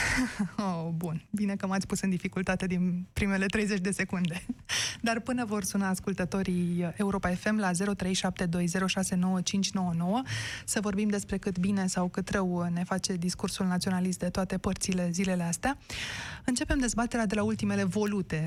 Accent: native